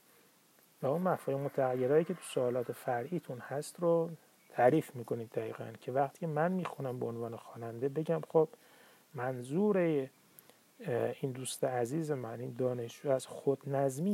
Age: 30-49